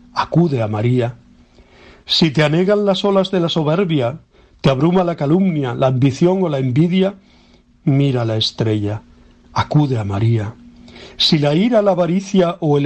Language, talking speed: Spanish, 155 wpm